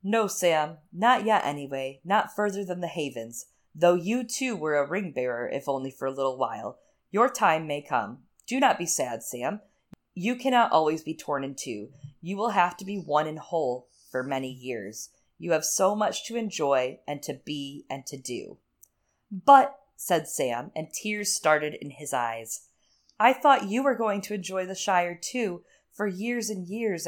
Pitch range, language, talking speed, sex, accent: 140-205 Hz, English, 185 wpm, female, American